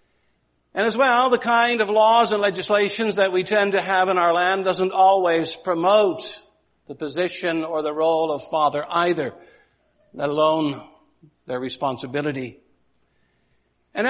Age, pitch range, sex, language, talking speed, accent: 60-79, 160-210 Hz, male, English, 140 wpm, American